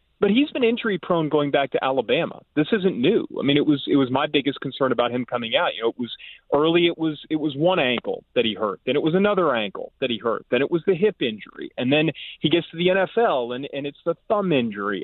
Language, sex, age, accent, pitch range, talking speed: English, male, 30-49, American, 135-185 Hz, 265 wpm